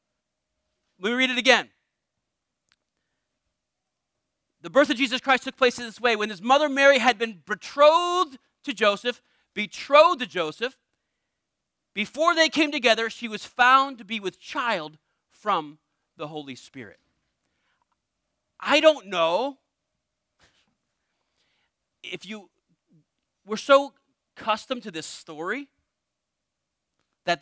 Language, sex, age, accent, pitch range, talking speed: English, male, 40-59, American, 180-265 Hz, 120 wpm